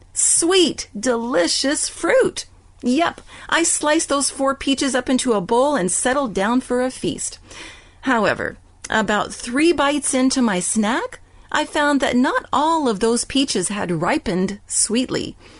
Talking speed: 140 wpm